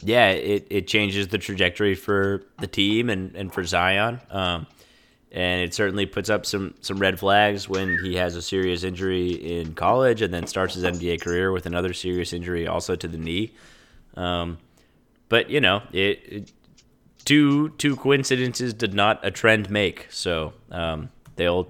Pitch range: 90-105 Hz